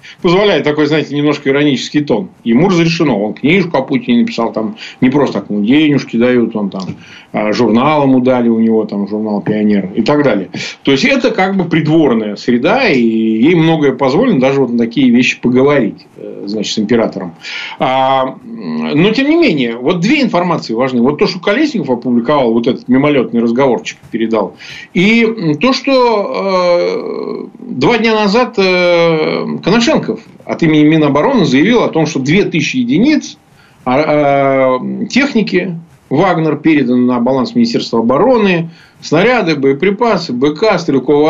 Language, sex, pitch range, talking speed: Ukrainian, male, 120-180 Hz, 140 wpm